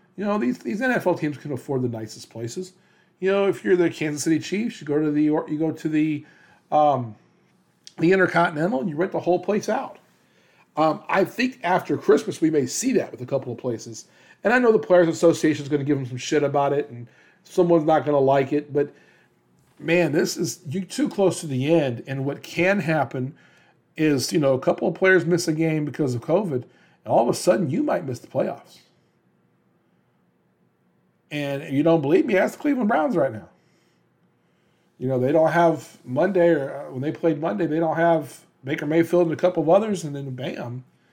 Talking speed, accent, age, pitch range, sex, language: 215 wpm, American, 40-59, 145-175 Hz, male, English